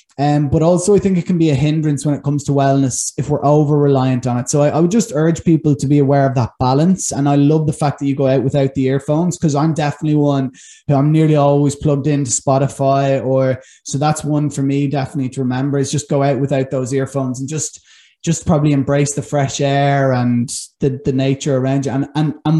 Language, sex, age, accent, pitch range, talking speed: English, male, 20-39, Irish, 135-155 Hz, 240 wpm